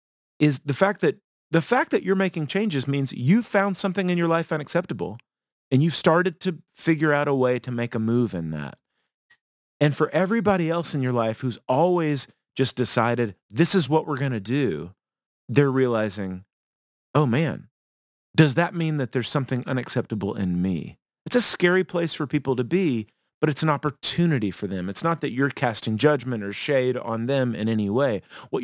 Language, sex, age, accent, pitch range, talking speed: English, male, 40-59, American, 115-155 Hz, 190 wpm